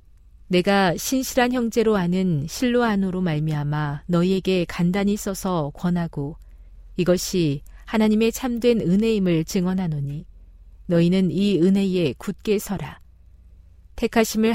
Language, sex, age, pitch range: Korean, female, 40-59, 150-205 Hz